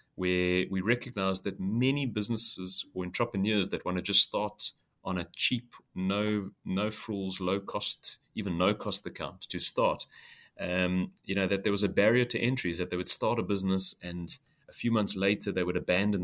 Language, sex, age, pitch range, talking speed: English, male, 30-49, 90-105 Hz, 185 wpm